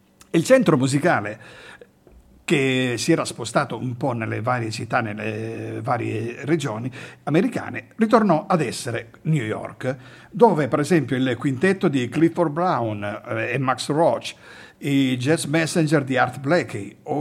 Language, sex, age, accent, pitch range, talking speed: Italian, male, 50-69, native, 125-170 Hz, 135 wpm